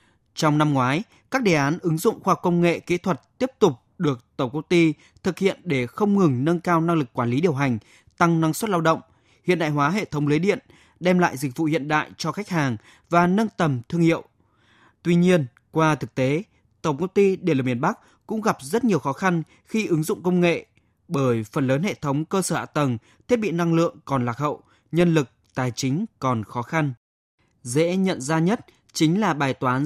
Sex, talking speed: male, 225 wpm